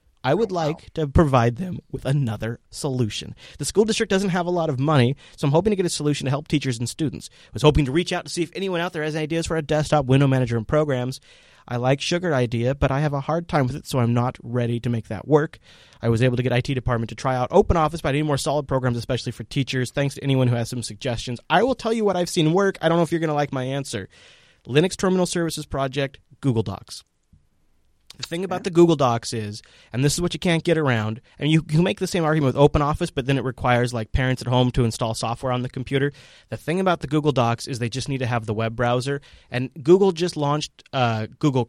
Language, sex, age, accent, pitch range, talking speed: English, male, 30-49, American, 120-150 Hz, 260 wpm